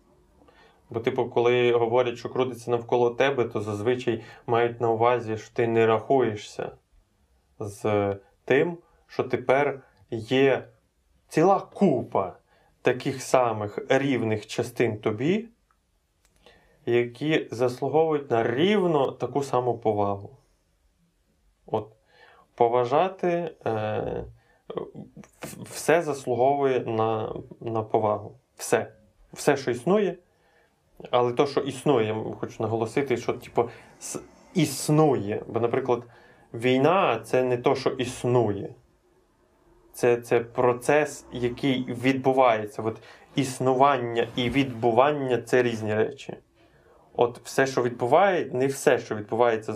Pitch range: 110-135 Hz